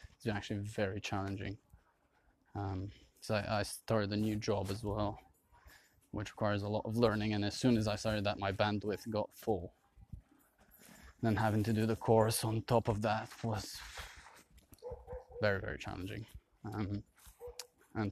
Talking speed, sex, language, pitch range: 155 wpm, male, English, 100-110 Hz